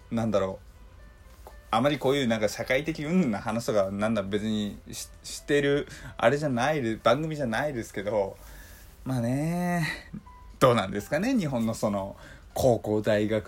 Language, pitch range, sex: Japanese, 100-140 Hz, male